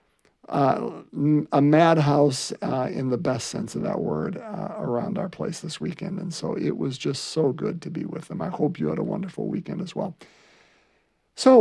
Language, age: English, 50-69